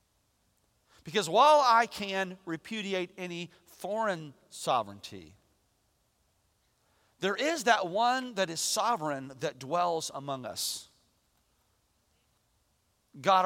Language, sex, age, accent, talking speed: English, male, 40-59, American, 90 wpm